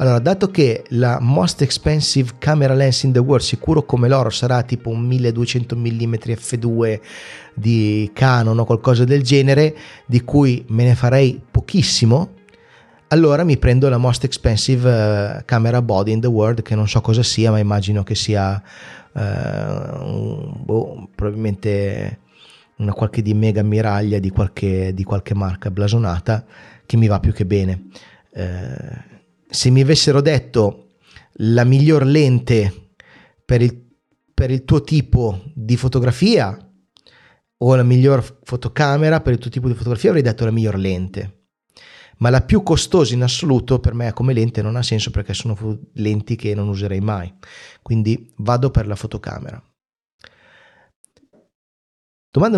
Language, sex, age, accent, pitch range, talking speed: Italian, male, 30-49, native, 110-135 Hz, 150 wpm